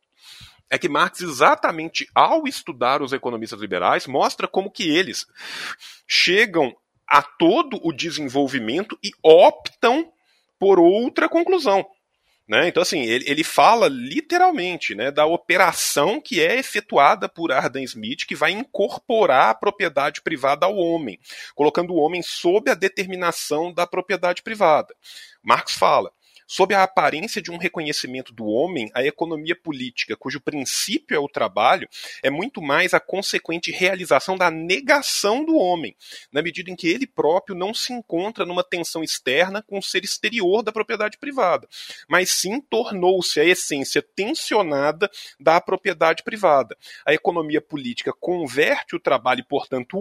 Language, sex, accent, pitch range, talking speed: Portuguese, male, Brazilian, 165-245 Hz, 145 wpm